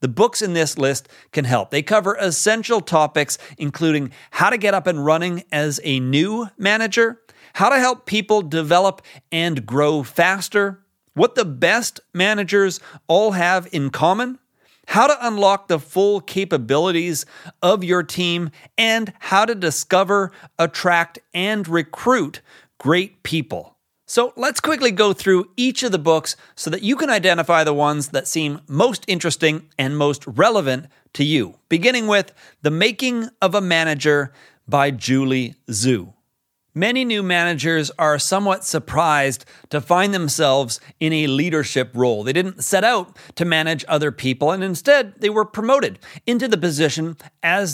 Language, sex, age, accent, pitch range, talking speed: English, male, 40-59, American, 150-200 Hz, 150 wpm